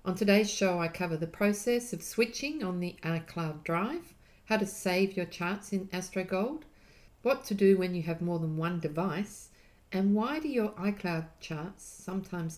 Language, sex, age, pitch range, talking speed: English, female, 50-69, 160-195 Hz, 175 wpm